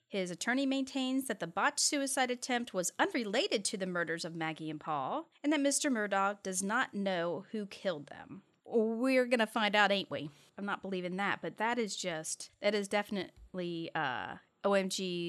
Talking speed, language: 180 wpm, English